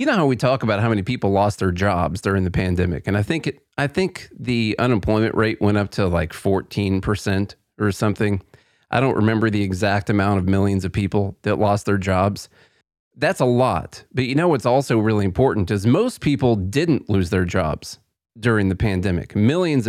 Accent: American